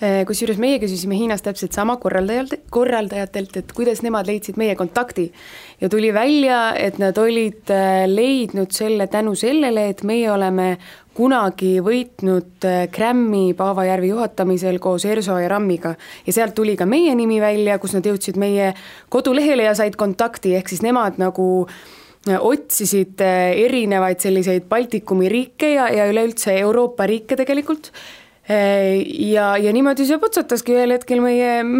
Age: 20-39